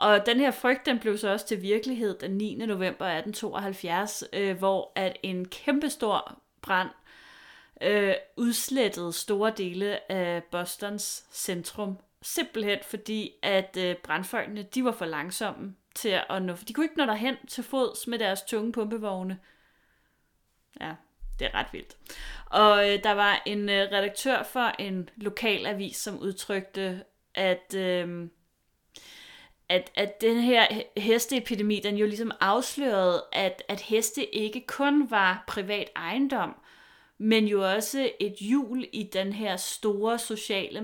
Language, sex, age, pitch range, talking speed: Danish, female, 30-49, 190-230 Hz, 145 wpm